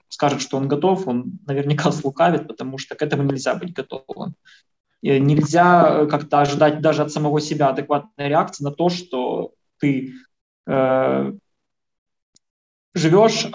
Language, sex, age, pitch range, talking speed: Russian, male, 20-39, 140-170 Hz, 130 wpm